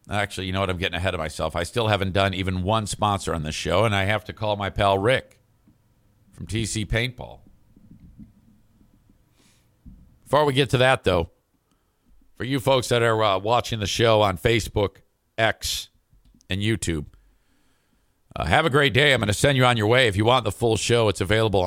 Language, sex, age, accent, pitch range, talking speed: English, male, 50-69, American, 100-120 Hz, 195 wpm